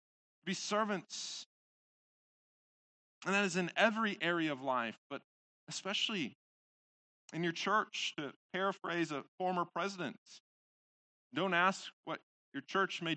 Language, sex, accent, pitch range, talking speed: English, male, American, 150-205 Hz, 120 wpm